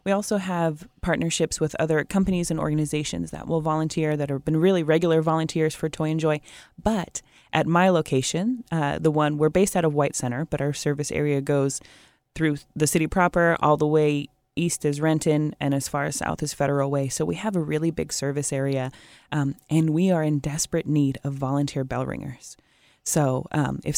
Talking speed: 200 wpm